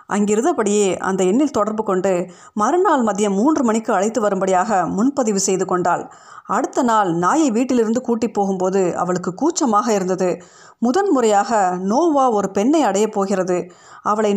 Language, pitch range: Tamil, 190-250 Hz